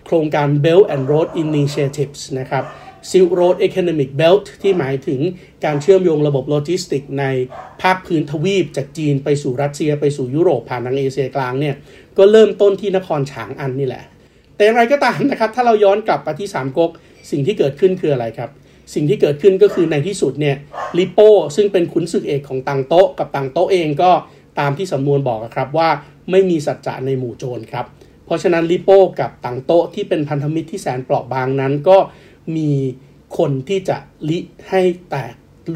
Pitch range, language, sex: 135-180 Hz, Thai, male